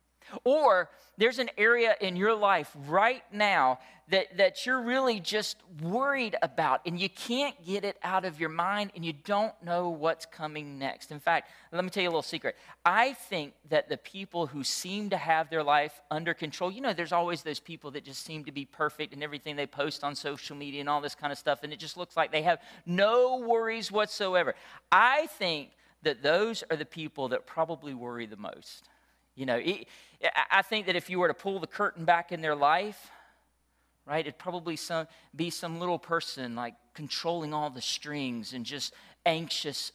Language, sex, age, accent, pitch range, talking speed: English, male, 40-59, American, 135-180 Hz, 200 wpm